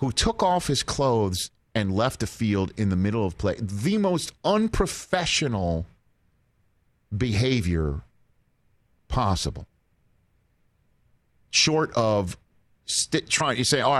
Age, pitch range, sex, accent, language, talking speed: 40-59, 100-135 Hz, male, American, English, 105 wpm